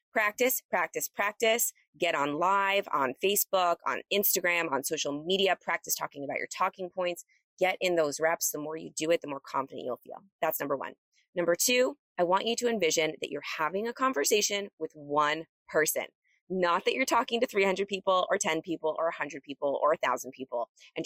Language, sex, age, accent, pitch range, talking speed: English, female, 20-39, American, 155-215 Hz, 195 wpm